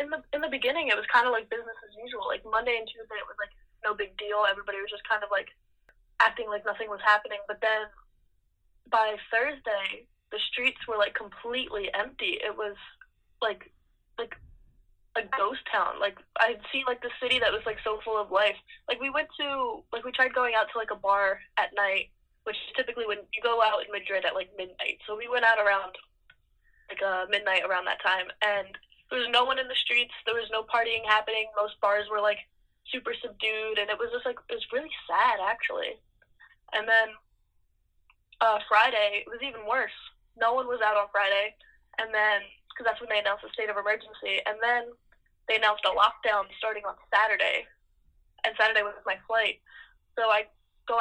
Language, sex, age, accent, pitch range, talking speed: English, female, 10-29, American, 210-245 Hz, 200 wpm